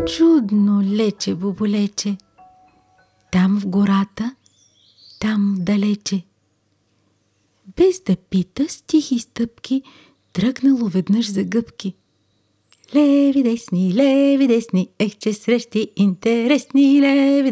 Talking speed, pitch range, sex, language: 90 wpm, 180-245 Hz, female, Bulgarian